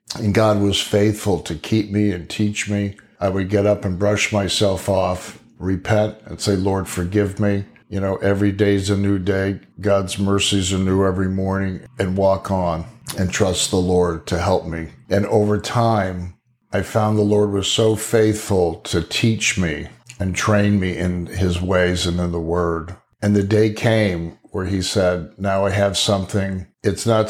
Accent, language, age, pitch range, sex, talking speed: American, English, 50-69, 90-105 Hz, male, 180 wpm